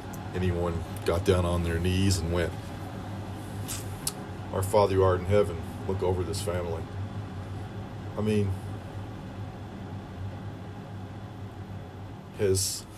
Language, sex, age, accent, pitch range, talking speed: English, male, 40-59, American, 95-105 Hz, 95 wpm